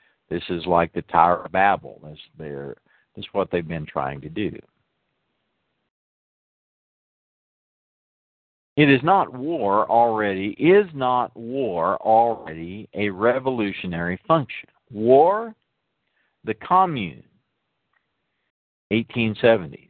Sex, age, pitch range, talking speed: male, 50-69, 90-130 Hz, 95 wpm